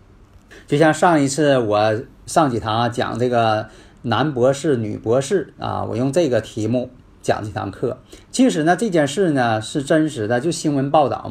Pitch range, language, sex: 110-165 Hz, Chinese, male